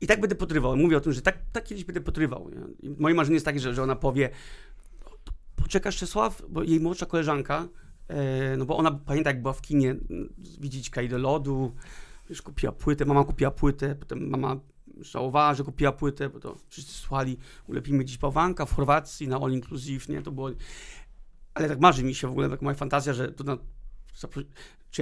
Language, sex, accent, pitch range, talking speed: Polish, male, native, 130-155 Hz, 190 wpm